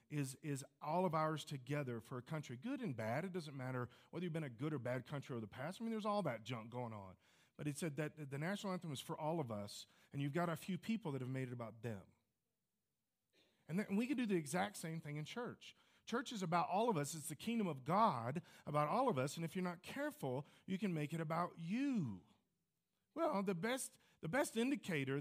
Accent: American